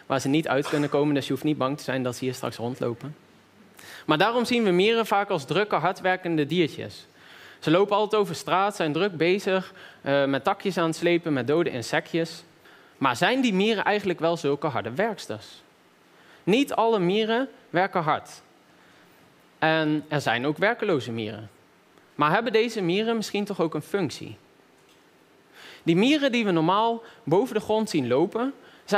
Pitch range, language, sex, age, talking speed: 150-210 Hz, Dutch, male, 20-39, 175 wpm